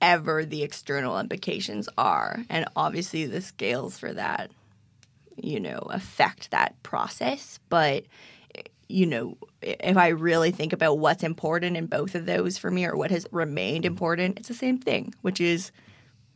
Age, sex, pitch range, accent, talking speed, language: 20-39, female, 160-205 Hz, American, 160 wpm, English